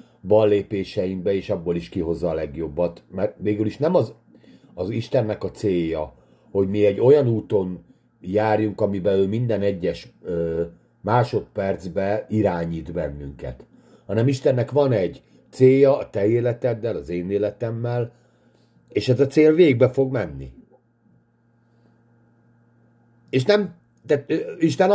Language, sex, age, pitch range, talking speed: Hungarian, male, 50-69, 100-130 Hz, 125 wpm